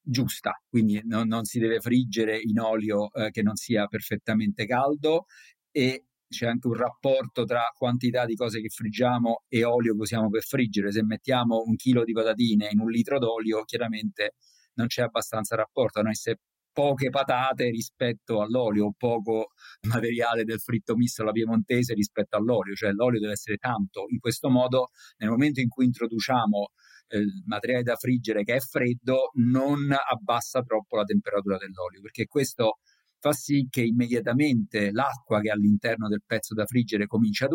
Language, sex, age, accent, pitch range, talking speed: Italian, male, 50-69, native, 110-125 Hz, 170 wpm